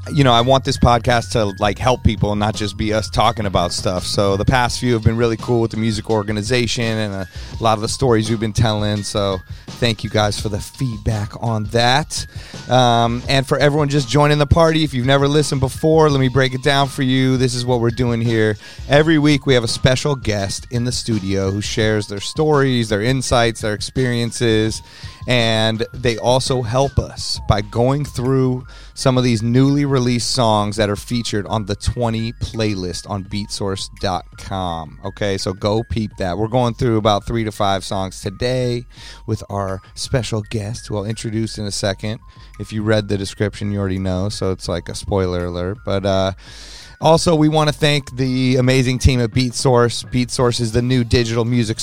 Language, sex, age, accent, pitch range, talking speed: English, male, 30-49, American, 105-125 Hz, 200 wpm